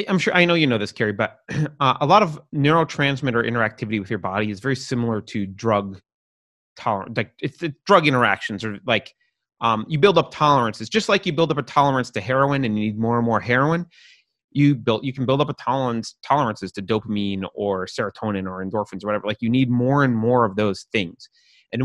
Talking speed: 210 wpm